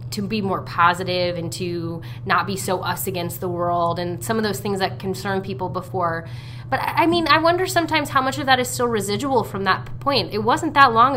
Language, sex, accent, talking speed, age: English, female, American, 225 wpm, 20-39